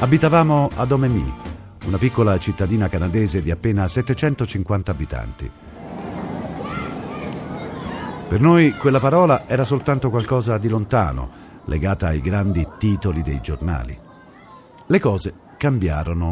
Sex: male